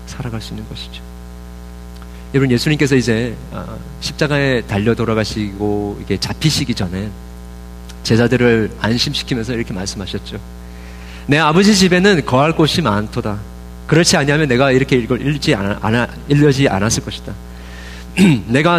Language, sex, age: Korean, male, 40-59